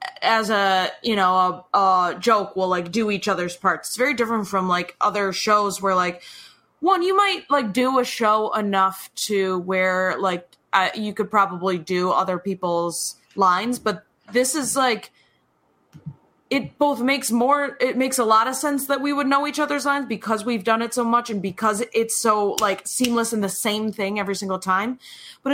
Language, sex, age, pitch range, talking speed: English, female, 20-39, 195-255 Hz, 190 wpm